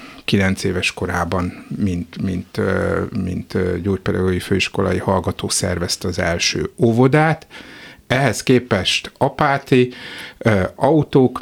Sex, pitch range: male, 95-120 Hz